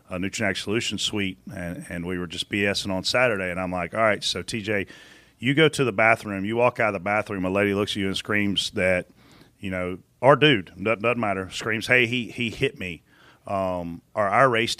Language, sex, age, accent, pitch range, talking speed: English, male, 40-59, American, 100-130 Hz, 220 wpm